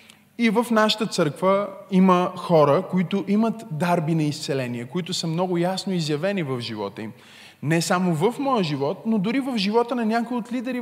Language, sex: Bulgarian, male